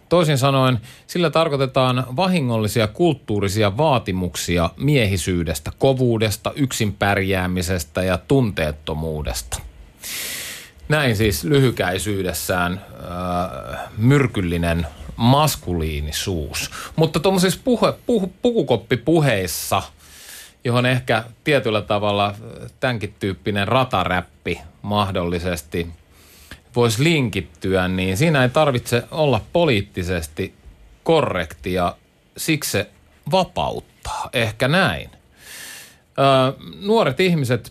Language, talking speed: Finnish, 70 wpm